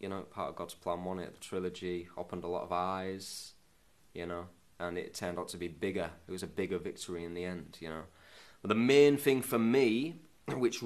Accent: British